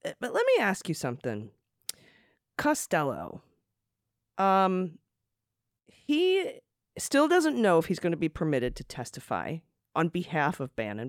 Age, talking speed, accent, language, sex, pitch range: 40-59, 130 wpm, American, English, female, 150-210 Hz